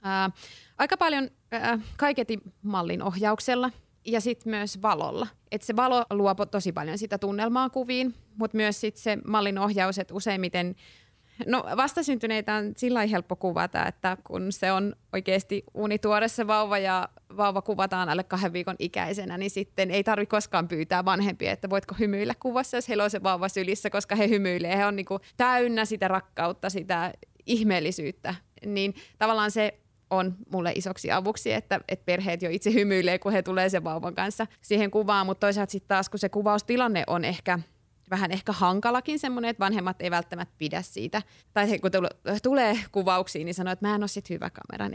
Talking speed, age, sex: 170 wpm, 20-39, female